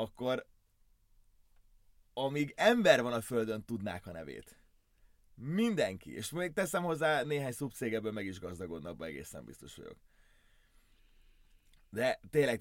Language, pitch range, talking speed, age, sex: Hungarian, 100-130 Hz, 120 wpm, 30-49, male